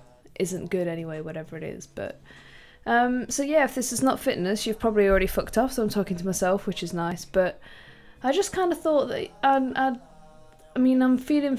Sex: female